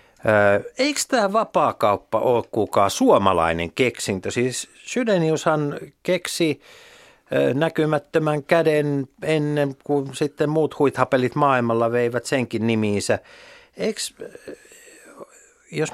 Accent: native